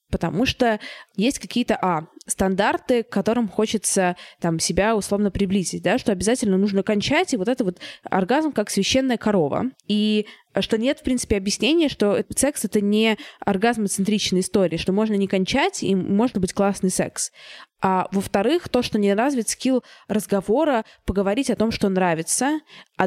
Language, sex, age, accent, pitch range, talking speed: Russian, female, 20-39, native, 190-230 Hz, 160 wpm